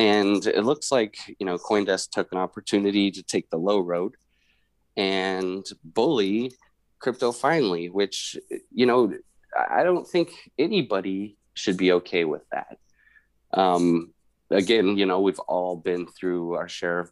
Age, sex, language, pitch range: 30-49, male, English, 90-110 Hz